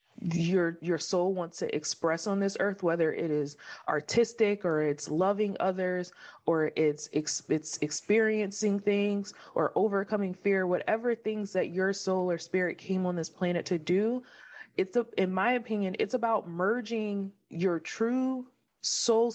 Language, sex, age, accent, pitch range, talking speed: English, female, 20-39, American, 165-205 Hz, 150 wpm